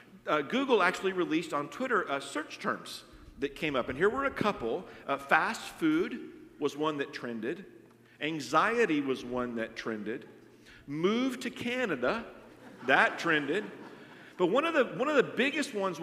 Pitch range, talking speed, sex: 155-240 Hz, 155 wpm, male